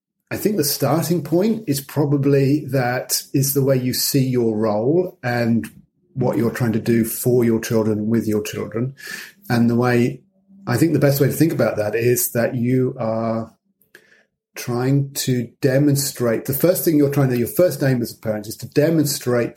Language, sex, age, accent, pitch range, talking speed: English, male, 40-59, British, 110-140 Hz, 185 wpm